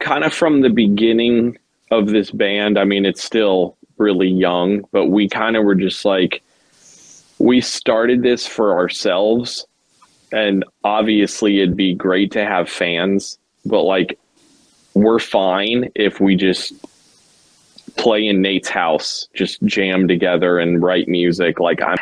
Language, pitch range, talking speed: English, 95-105 Hz, 145 wpm